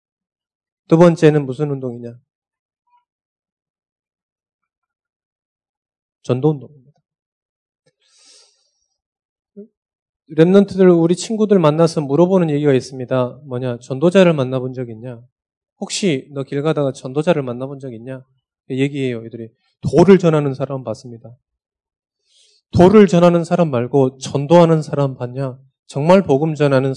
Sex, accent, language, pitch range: male, native, Korean, 130-165 Hz